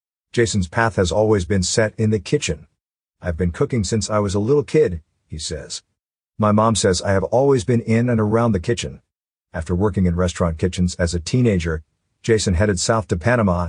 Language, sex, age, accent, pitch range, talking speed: English, male, 50-69, American, 90-120 Hz, 195 wpm